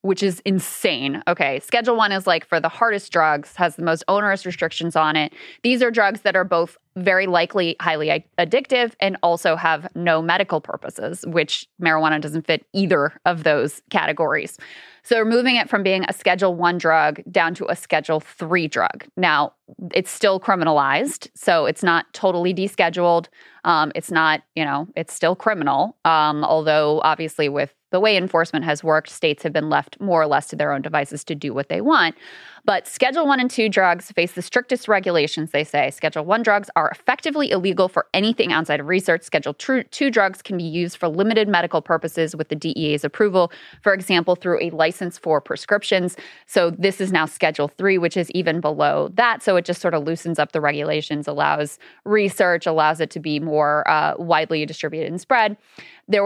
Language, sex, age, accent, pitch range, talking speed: English, female, 20-39, American, 155-195 Hz, 190 wpm